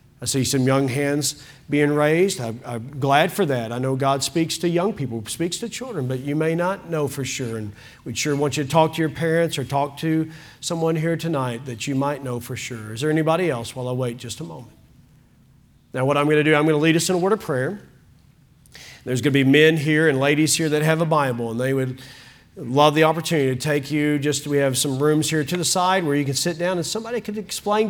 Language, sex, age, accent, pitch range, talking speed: English, male, 40-59, American, 125-160 Hz, 250 wpm